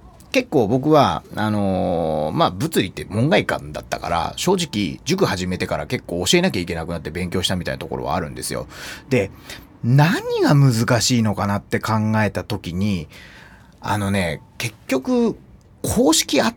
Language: Japanese